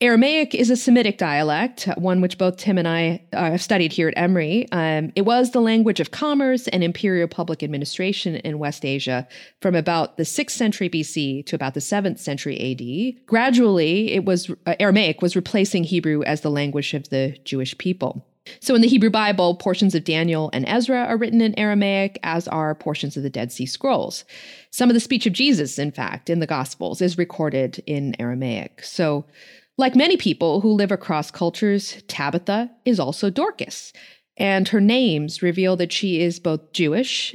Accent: American